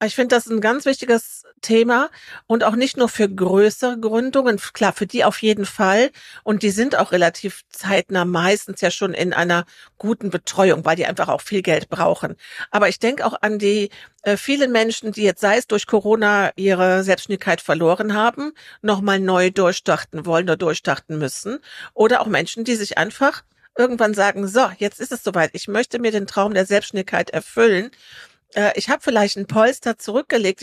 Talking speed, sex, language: 185 wpm, female, German